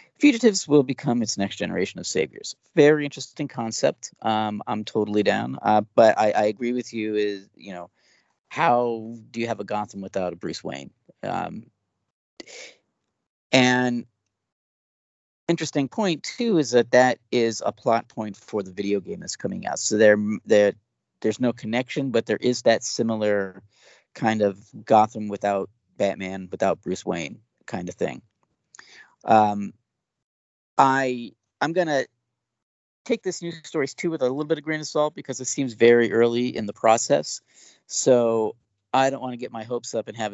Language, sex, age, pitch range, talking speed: English, male, 40-59, 105-135 Hz, 165 wpm